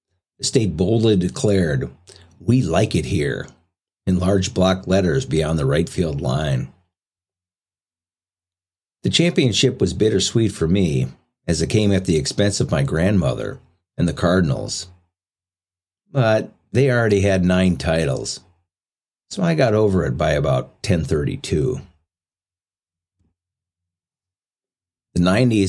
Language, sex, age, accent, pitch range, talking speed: English, male, 50-69, American, 85-105 Hz, 115 wpm